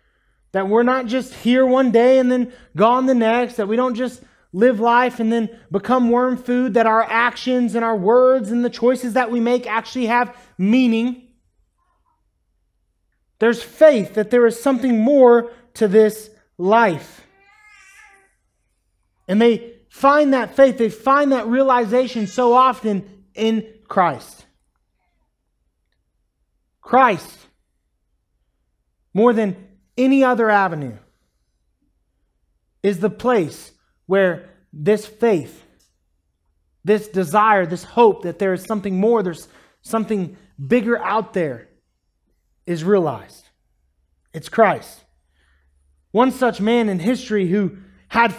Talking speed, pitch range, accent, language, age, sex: 120 wpm, 175-245 Hz, American, English, 30-49, male